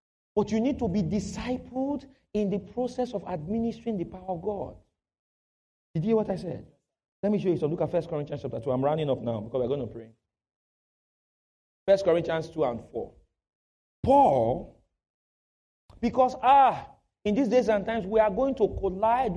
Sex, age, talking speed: male, 40-59, 185 wpm